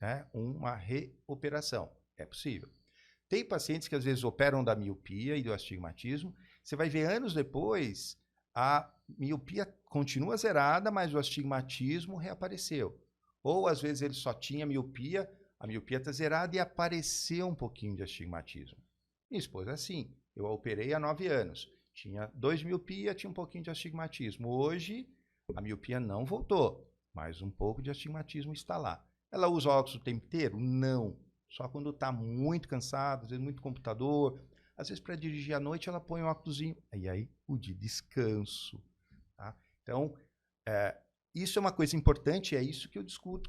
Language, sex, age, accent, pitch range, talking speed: Portuguese, male, 50-69, Brazilian, 115-160 Hz, 160 wpm